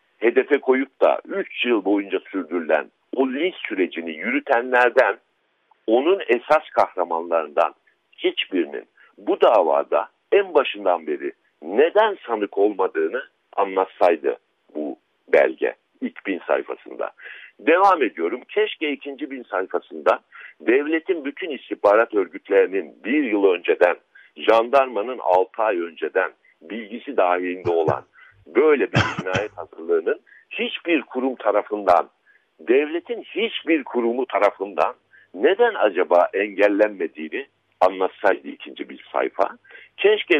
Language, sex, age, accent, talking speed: Turkish, male, 60-79, native, 100 wpm